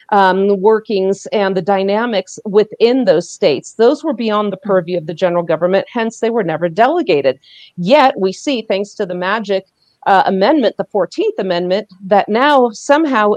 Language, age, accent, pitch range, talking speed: English, 40-59, American, 190-265 Hz, 170 wpm